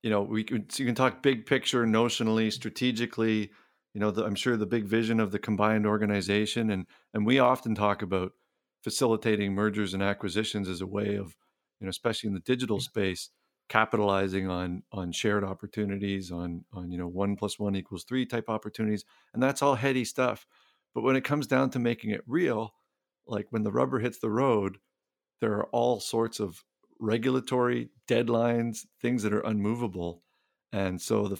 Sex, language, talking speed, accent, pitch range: male, English, 185 wpm, American, 100-120 Hz